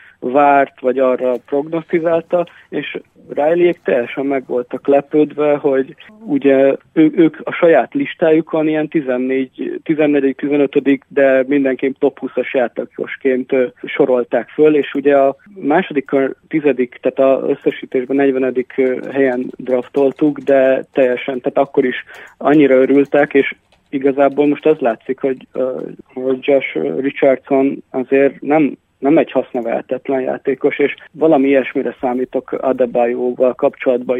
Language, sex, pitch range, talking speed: Hungarian, male, 130-145 Hz, 120 wpm